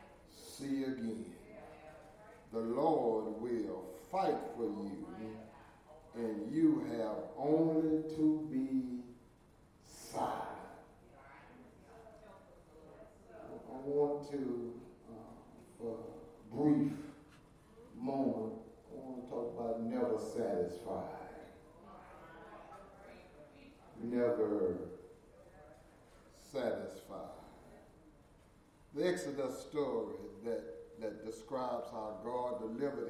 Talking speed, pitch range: 75 wpm, 115-150 Hz